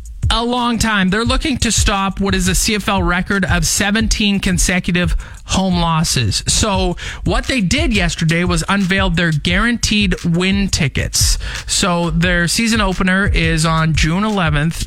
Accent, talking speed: American, 145 wpm